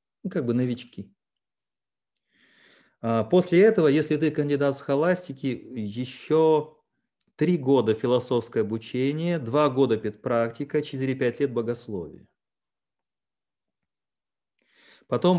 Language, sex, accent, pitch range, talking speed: Russian, male, native, 120-155 Hz, 85 wpm